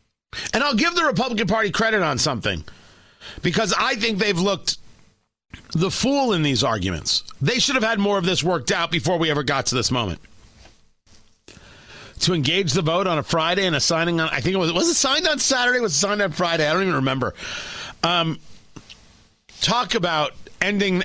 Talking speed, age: 190 wpm, 40-59